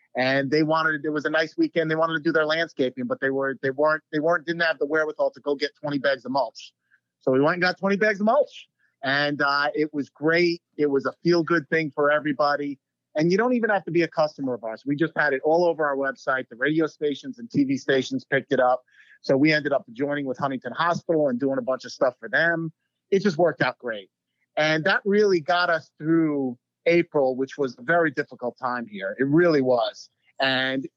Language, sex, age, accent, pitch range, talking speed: English, male, 30-49, American, 135-170 Hz, 235 wpm